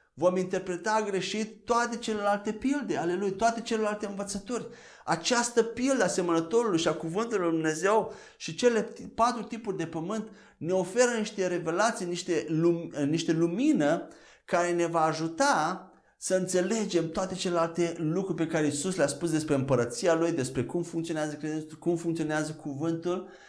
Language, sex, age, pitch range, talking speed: Romanian, male, 30-49, 160-215 Hz, 145 wpm